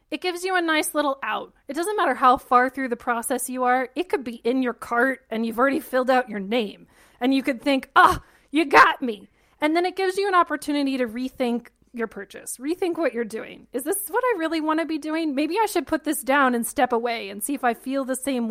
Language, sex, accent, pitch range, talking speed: English, female, American, 240-320 Hz, 255 wpm